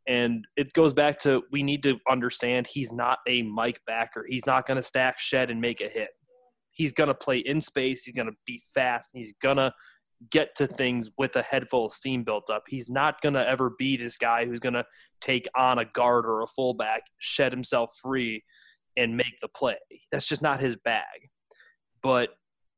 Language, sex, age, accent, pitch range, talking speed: English, male, 20-39, American, 125-145 Hz, 210 wpm